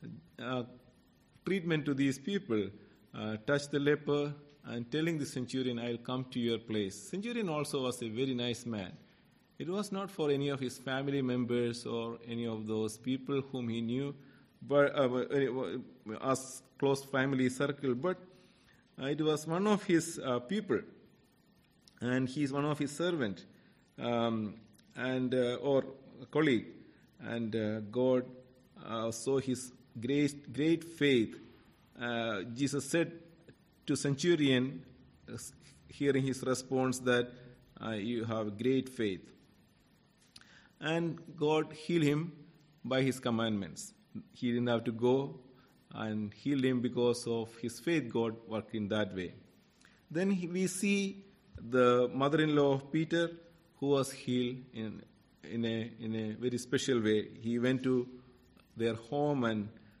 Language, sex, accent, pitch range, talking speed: English, male, Indian, 120-145 Hz, 135 wpm